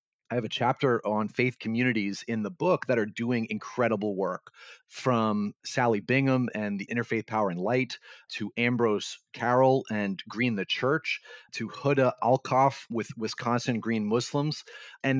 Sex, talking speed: male, 155 wpm